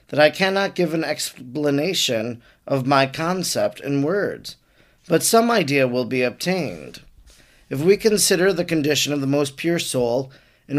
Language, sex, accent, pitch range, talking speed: English, male, American, 135-170 Hz, 155 wpm